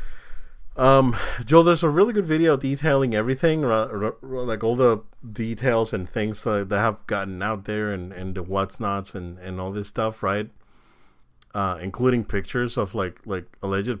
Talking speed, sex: 175 wpm, male